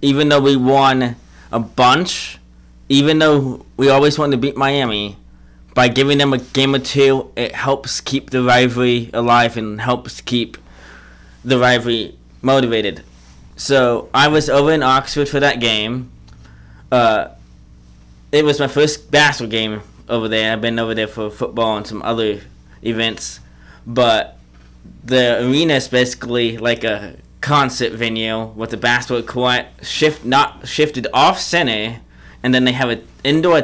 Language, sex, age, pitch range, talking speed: English, male, 20-39, 105-135 Hz, 145 wpm